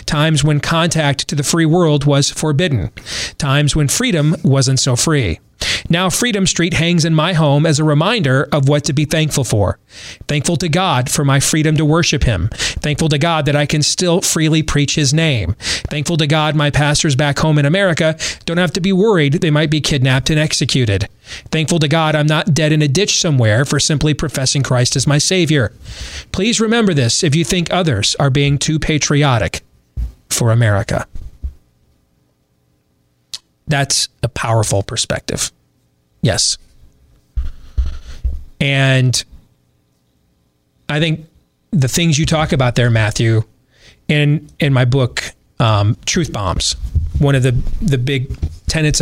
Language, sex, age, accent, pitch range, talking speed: English, male, 40-59, American, 105-155 Hz, 160 wpm